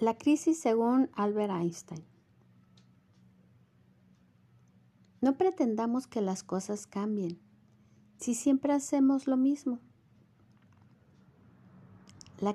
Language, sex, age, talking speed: Spanish, female, 50-69, 80 wpm